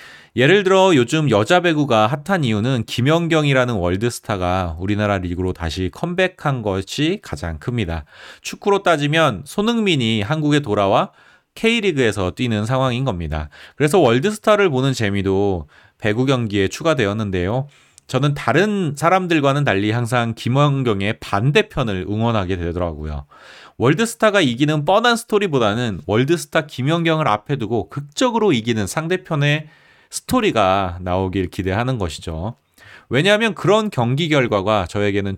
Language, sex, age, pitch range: Korean, male, 30-49, 100-155 Hz